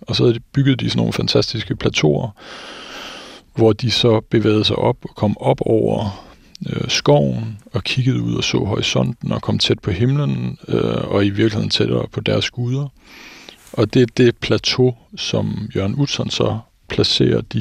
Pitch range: 100-120 Hz